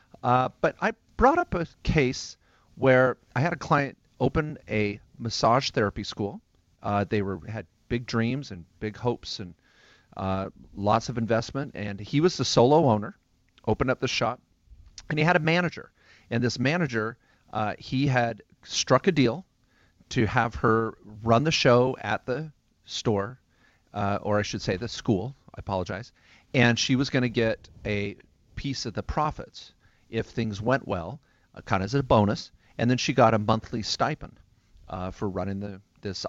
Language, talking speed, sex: English, 175 wpm, male